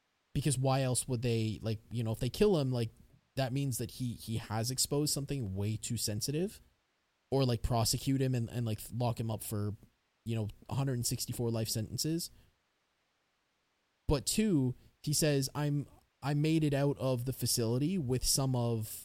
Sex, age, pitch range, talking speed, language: male, 20-39, 115-145 Hz, 175 wpm, English